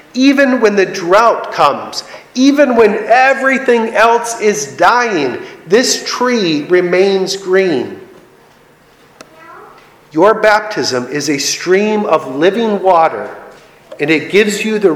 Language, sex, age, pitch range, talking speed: English, male, 40-59, 155-225 Hz, 110 wpm